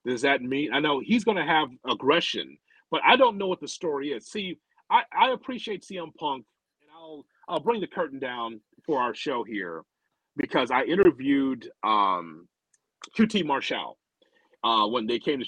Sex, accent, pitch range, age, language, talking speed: male, American, 140-220 Hz, 40-59, English, 175 wpm